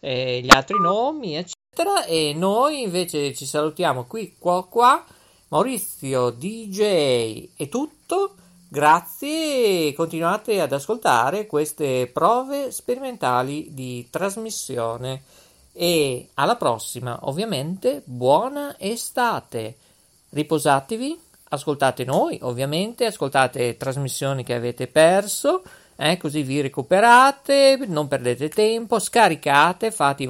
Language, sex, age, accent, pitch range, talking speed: Italian, male, 50-69, native, 135-215 Hz, 100 wpm